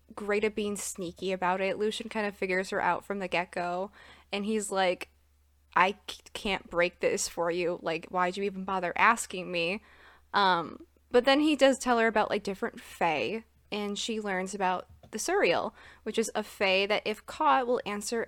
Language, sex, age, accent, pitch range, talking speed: English, female, 20-39, American, 190-225 Hz, 185 wpm